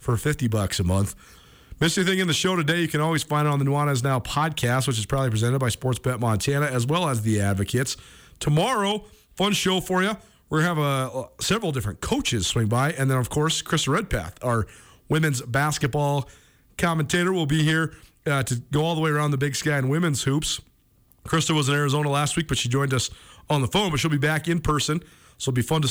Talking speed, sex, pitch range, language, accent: 225 wpm, male, 125-160 Hz, English, American